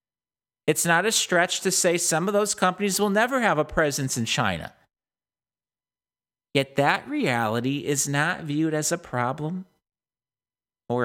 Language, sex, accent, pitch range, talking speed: English, male, American, 115-175 Hz, 145 wpm